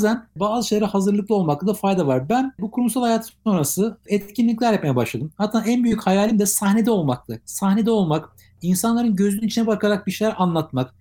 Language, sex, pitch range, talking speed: Turkish, male, 160-220 Hz, 175 wpm